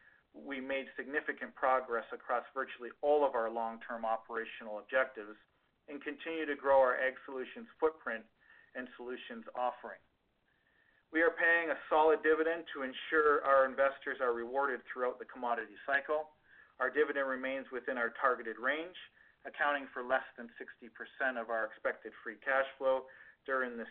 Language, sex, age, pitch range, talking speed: English, male, 40-59, 120-145 Hz, 145 wpm